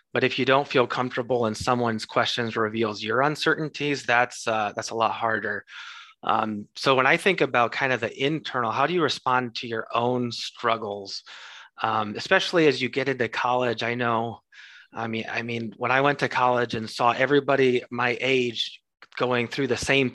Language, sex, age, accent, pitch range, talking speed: English, male, 30-49, American, 115-135 Hz, 190 wpm